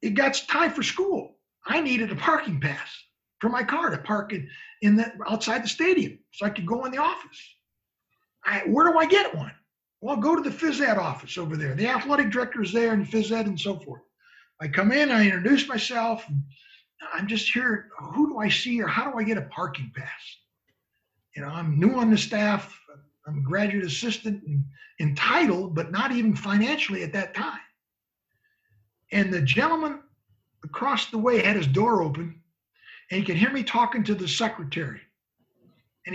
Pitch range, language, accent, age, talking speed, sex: 185-255 Hz, English, American, 50-69, 195 wpm, male